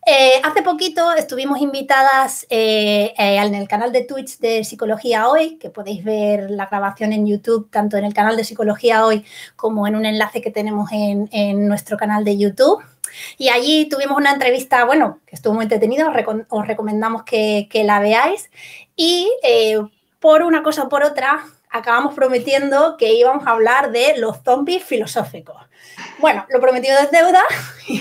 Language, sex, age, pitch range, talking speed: Spanish, female, 20-39, 220-290 Hz, 175 wpm